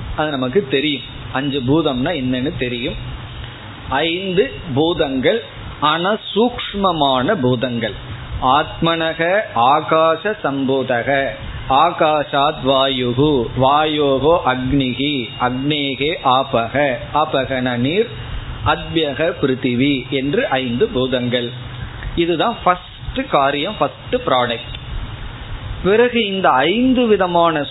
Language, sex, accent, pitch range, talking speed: Tamil, male, native, 130-170 Hz, 40 wpm